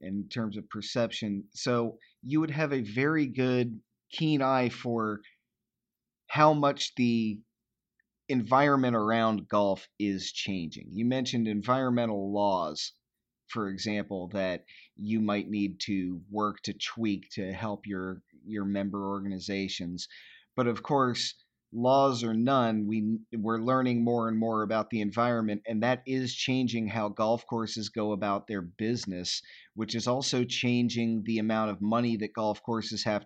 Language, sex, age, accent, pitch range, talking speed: English, male, 30-49, American, 105-120 Hz, 145 wpm